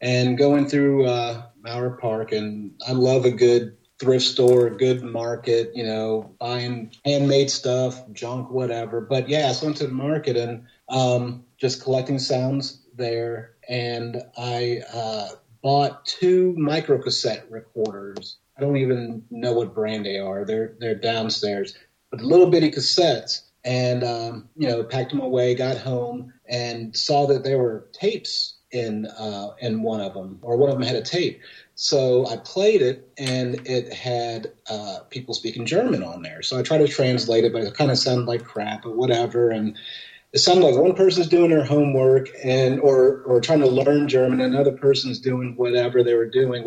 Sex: male